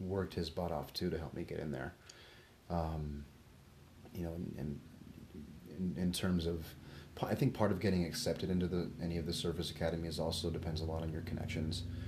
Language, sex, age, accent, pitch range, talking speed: English, male, 30-49, American, 80-90 Hz, 200 wpm